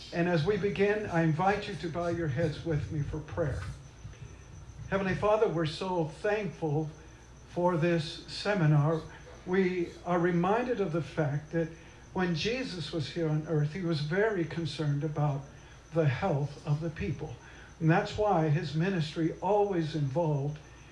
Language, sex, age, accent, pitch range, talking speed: English, male, 50-69, American, 145-180 Hz, 150 wpm